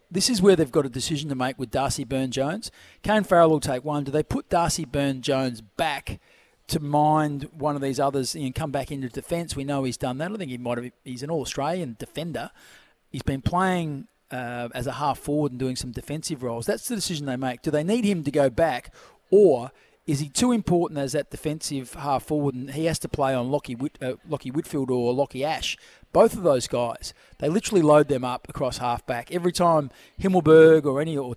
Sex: male